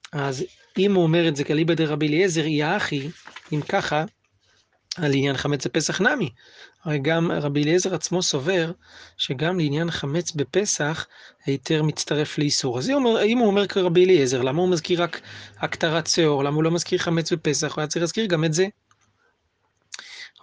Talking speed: 165 wpm